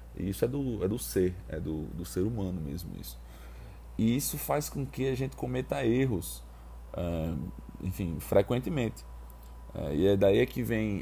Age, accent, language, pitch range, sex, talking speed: 20-39, Brazilian, Portuguese, 90-120 Hz, male, 170 wpm